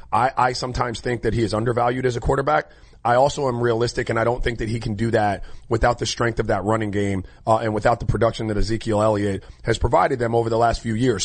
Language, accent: English, American